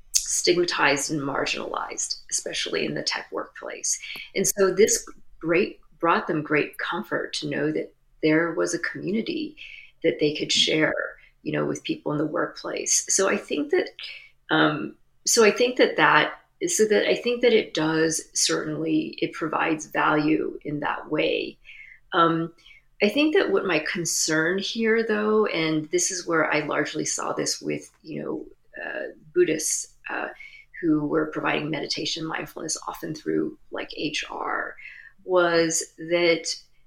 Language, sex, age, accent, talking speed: English, female, 40-59, American, 150 wpm